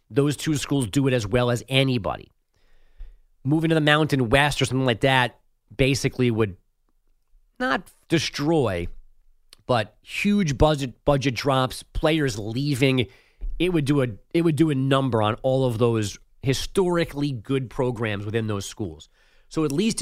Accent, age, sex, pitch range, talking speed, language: American, 30-49, male, 110-140 Hz, 155 wpm, English